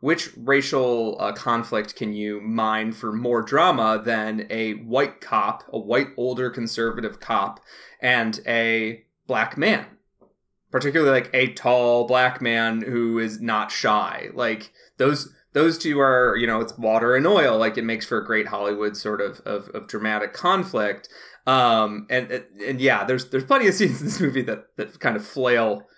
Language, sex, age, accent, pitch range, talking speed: English, male, 30-49, American, 110-125 Hz, 170 wpm